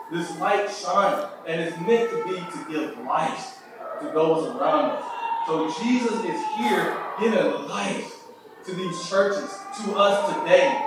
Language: English